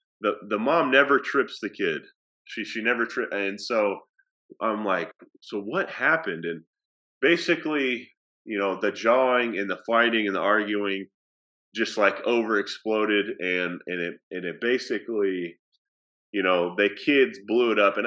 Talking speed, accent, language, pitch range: 155 wpm, American, English, 100-135 Hz